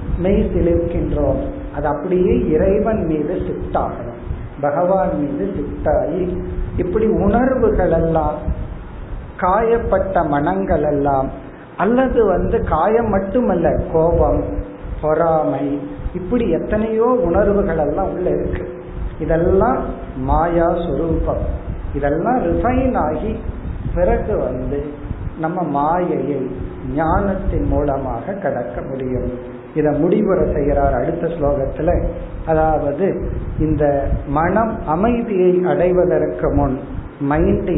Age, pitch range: 50-69, 145-190 Hz